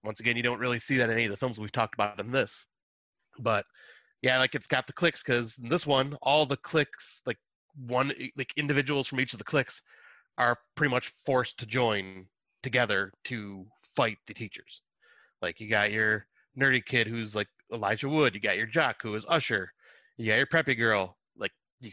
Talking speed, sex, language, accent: 205 wpm, male, English, American